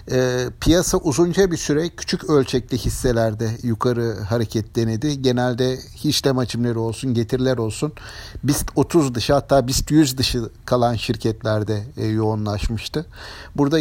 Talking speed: 115 wpm